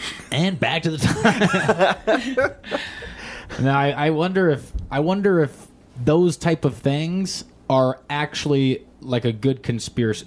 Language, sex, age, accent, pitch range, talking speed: English, male, 20-39, American, 120-150 Hz, 135 wpm